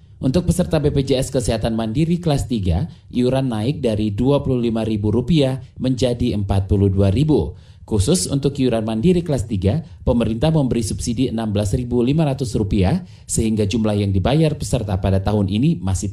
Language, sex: Indonesian, male